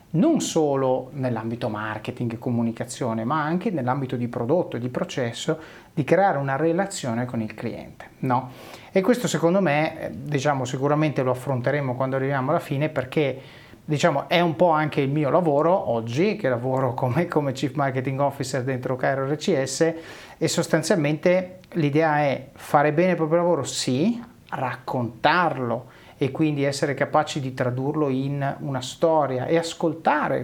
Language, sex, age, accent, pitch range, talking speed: Italian, male, 30-49, native, 130-160 Hz, 150 wpm